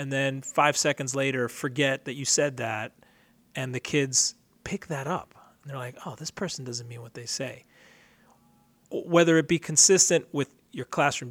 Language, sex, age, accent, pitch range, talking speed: English, male, 30-49, American, 130-160 Hz, 180 wpm